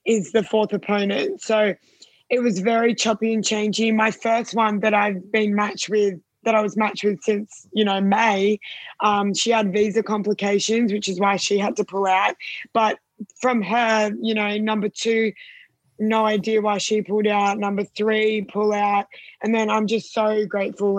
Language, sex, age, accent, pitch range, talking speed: English, female, 20-39, Australian, 205-225 Hz, 185 wpm